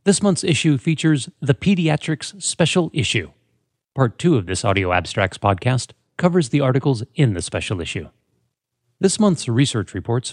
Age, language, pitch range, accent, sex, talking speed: 30-49, English, 115-160 Hz, American, male, 150 wpm